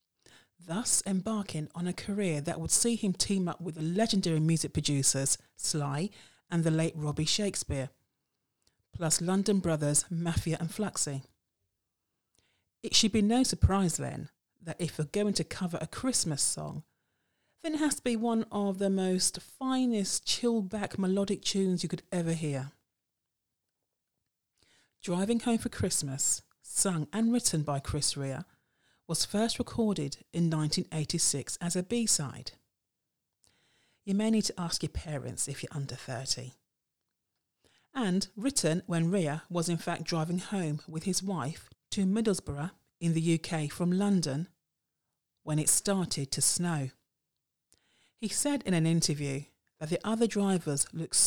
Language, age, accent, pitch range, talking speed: English, 40-59, British, 150-200 Hz, 145 wpm